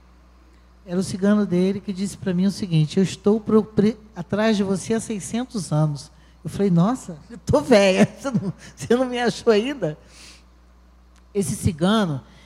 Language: Portuguese